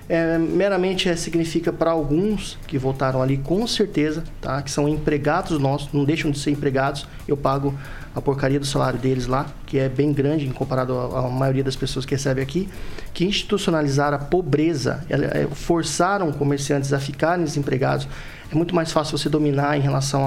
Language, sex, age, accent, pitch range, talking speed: Portuguese, male, 20-39, Brazilian, 140-175 Hz, 180 wpm